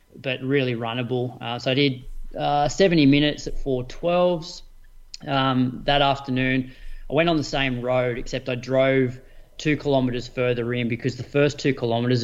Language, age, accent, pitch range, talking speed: English, 20-39, Australian, 120-140 Hz, 160 wpm